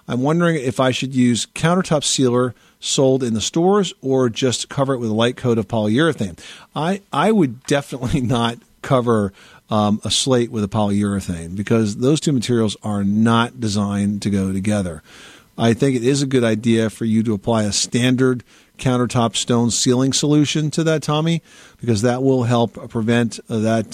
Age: 50-69